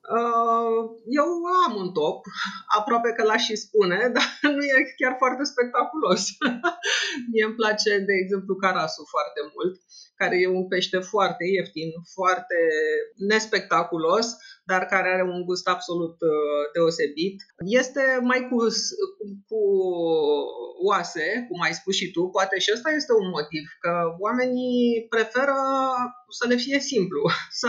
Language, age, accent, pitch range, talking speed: Romanian, 30-49, native, 185-245 Hz, 135 wpm